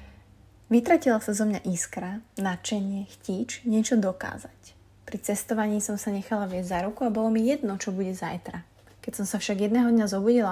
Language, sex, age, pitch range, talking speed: Slovak, female, 20-39, 185-220 Hz, 175 wpm